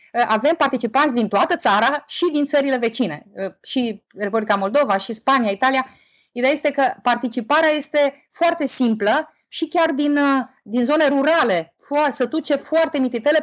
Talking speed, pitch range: 145 wpm, 230-300 Hz